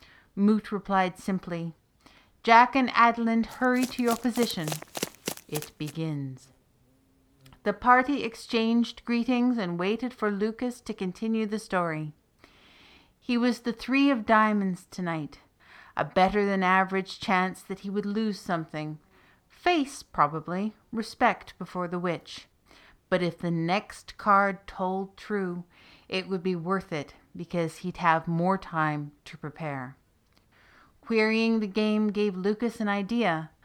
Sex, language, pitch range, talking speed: female, English, 170-225 Hz, 130 wpm